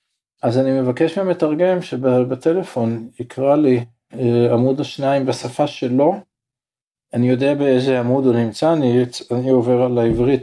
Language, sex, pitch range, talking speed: Hebrew, male, 120-170 Hz, 125 wpm